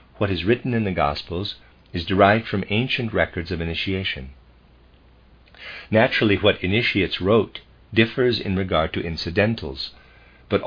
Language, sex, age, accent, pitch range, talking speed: English, male, 50-69, American, 75-110 Hz, 130 wpm